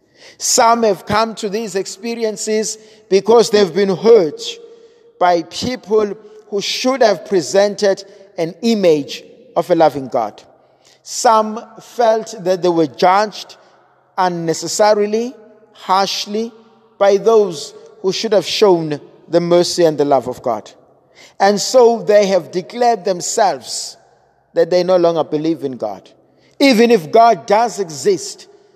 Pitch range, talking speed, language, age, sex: 175-220 Hz, 125 wpm, English, 50-69, male